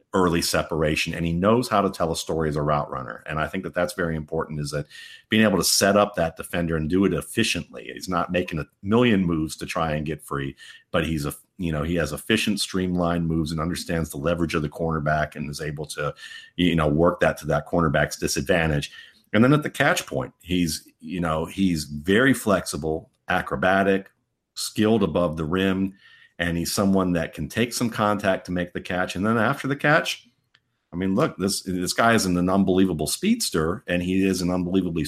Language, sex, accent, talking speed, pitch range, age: English, male, American, 210 wpm, 80-100 Hz, 50-69